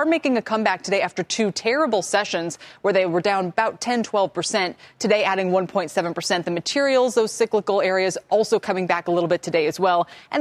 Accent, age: American, 20-39